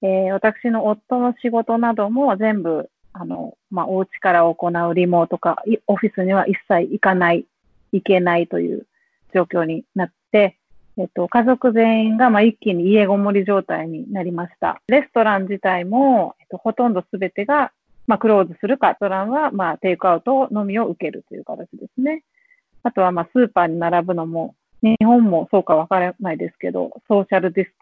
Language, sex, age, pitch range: English, female, 40-59, 180-235 Hz